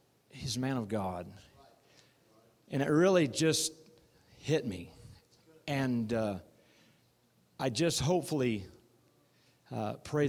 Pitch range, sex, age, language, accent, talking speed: 125-170 Hz, male, 40-59, English, American, 105 wpm